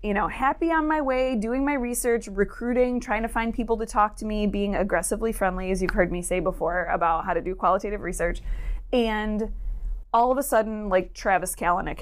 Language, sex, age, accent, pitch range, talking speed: English, female, 20-39, American, 175-220 Hz, 205 wpm